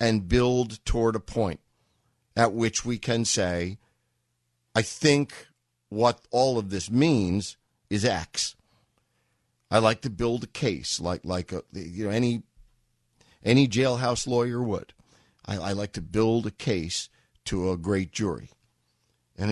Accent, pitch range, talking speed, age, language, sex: American, 90-125 Hz, 145 wpm, 50-69, English, male